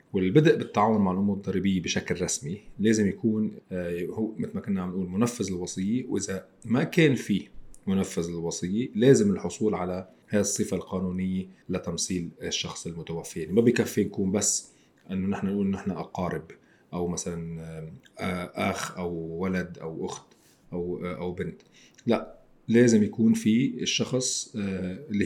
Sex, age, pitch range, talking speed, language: male, 40-59, 85-105 Hz, 135 wpm, Arabic